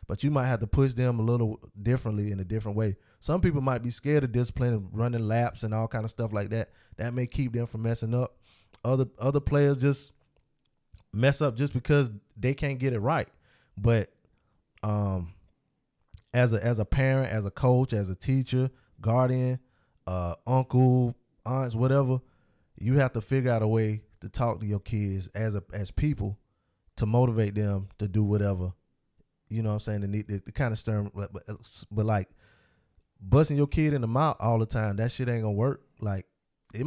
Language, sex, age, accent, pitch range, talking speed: English, male, 20-39, American, 105-130 Hz, 200 wpm